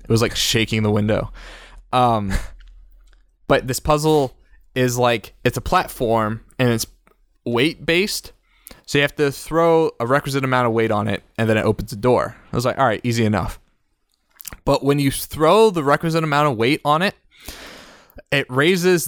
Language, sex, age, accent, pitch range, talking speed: English, male, 20-39, American, 115-150 Hz, 180 wpm